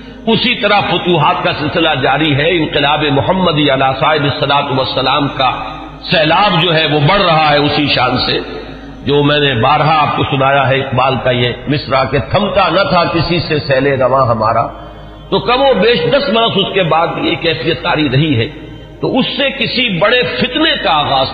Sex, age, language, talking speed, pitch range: male, 50-69, Urdu, 185 wpm, 135-180 Hz